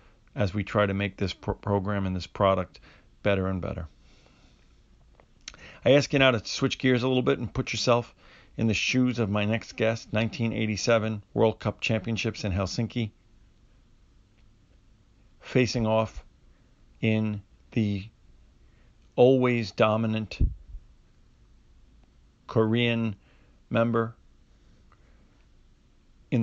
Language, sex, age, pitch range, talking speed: English, male, 50-69, 95-115 Hz, 110 wpm